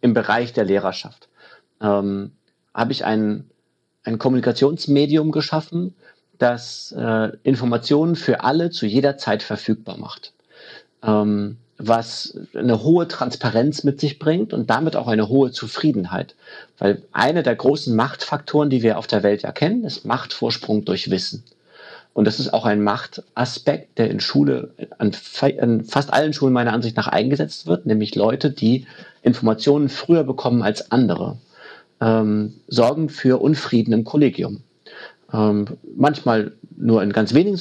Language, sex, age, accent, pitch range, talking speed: German, male, 40-59, German, 110-145 Hz, 145 wpm